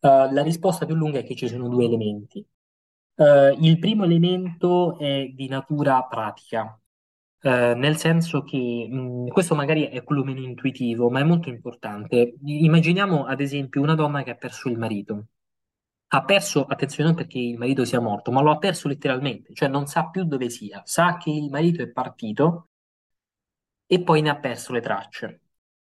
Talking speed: 170 wpm